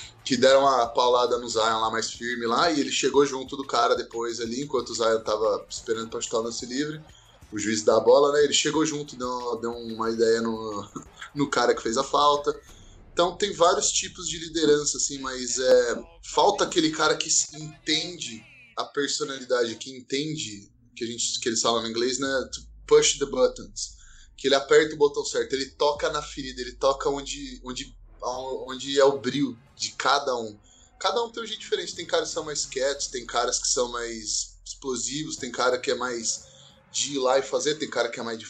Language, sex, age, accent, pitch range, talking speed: Portuguese, male, 20-39, Brazilian, 120-150 Hz, 210 wpm